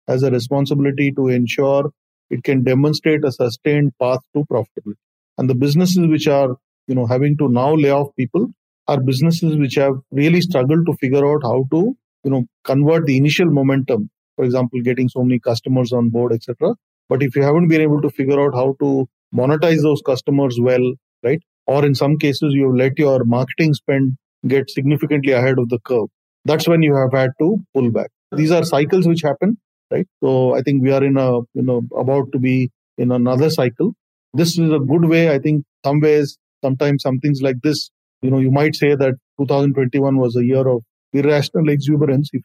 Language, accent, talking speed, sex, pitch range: English, Indian, 200 wpm, male, 130-150 Hz